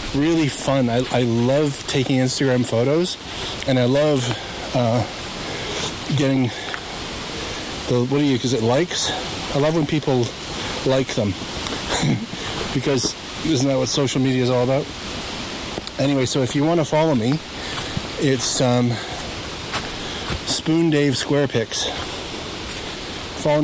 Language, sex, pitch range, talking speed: English, male, 110-140 Hz, 125 wpm